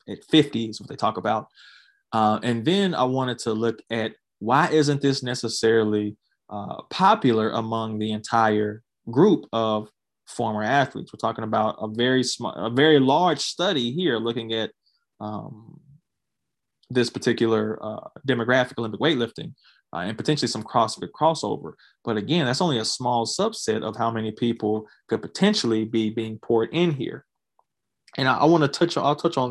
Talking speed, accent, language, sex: 160 wpm, American, English, male